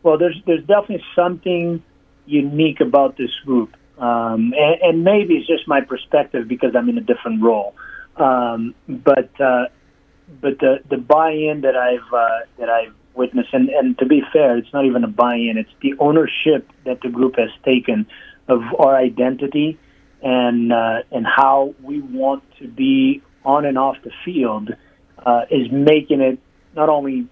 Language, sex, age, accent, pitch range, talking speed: English, male, 30-49, American, 120-145 Hz, 165 wpm